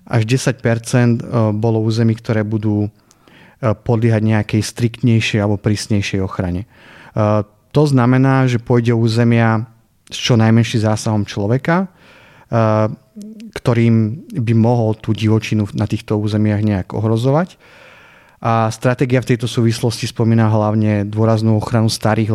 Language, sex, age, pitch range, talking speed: Slovak, male, 30-49, 110-125 Hz, 115 wpm